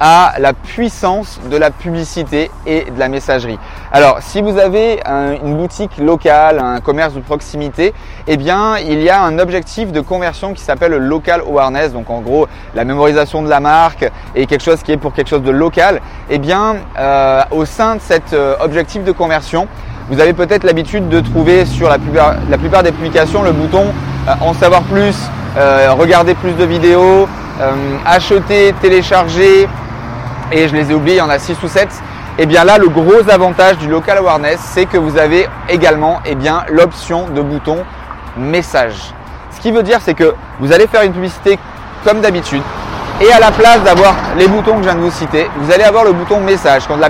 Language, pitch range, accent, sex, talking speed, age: French, 150-195 Hz, French, male, 200 wpm, 20-39